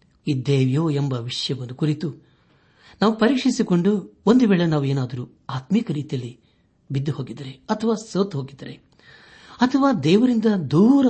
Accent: native